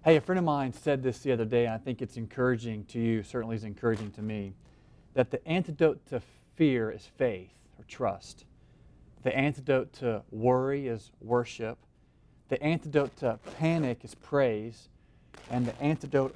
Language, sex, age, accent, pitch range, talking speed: English, male, 40-59, American, 115-140 Hz, 170 wpm